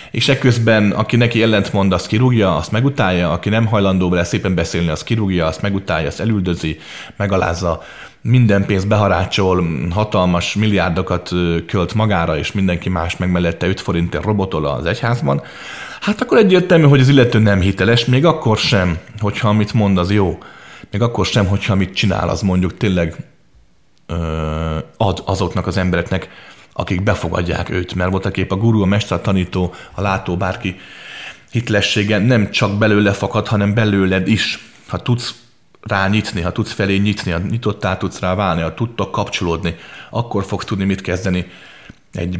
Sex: male